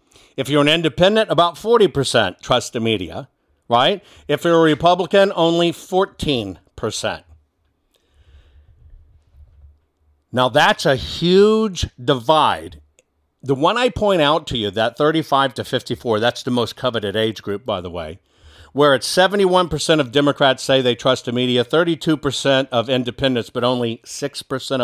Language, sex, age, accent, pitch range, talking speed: English, male, 50-69, American, 105-160 Hz, 140 wpm